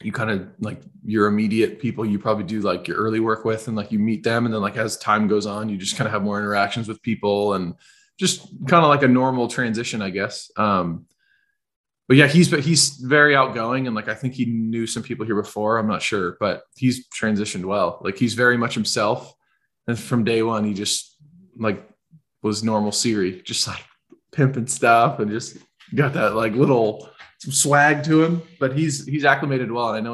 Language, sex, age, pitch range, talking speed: English, male, 20-39, 105-135 Hz, 215 wpm